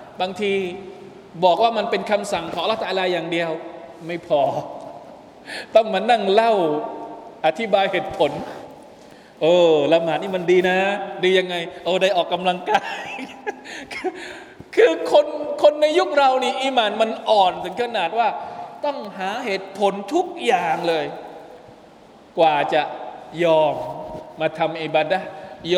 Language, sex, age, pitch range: Thai, male, 20-39, 160-215 Hz